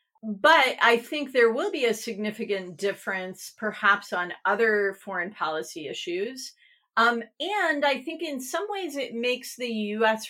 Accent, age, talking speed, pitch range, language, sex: American, 40-59, 150 wpm, 185-255 Hz, English, female